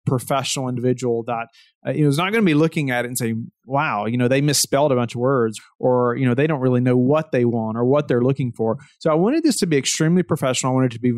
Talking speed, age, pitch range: 285 wpm, 30-49, 125-155 Hz